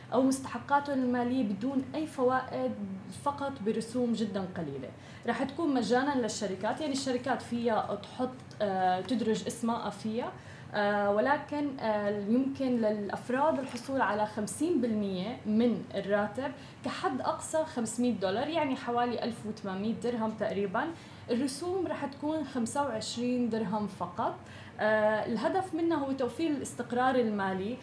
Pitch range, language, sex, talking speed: 210-260 Hz, Arabic, female, 110 wpm